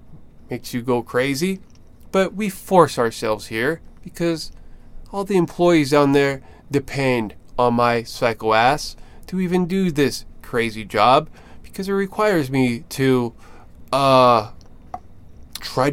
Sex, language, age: male, English, 20-39